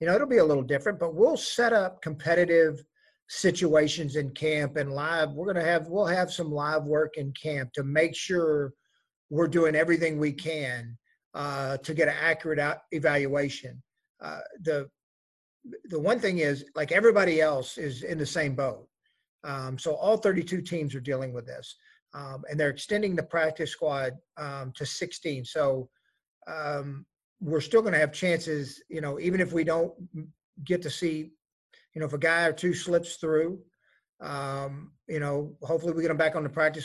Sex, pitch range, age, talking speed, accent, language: male, 145-170 Hz, 40-59, 175 wpm, American, English